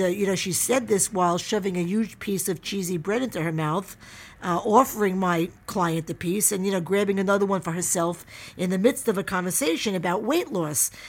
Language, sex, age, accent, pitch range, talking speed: English, female, 50-69, American, 165-210 Hz, 215 wpm